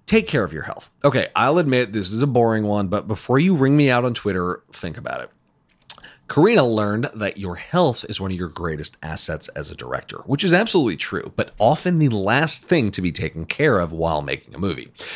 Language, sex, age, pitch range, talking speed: English, male, 30-49, 85-140 Hz, 220 wpm